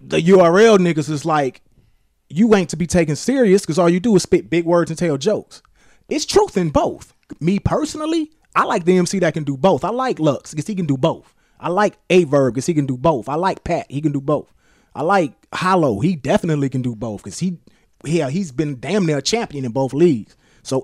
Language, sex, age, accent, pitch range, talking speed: English, male, 30-49, American, 135-170 Hz, 230 wpm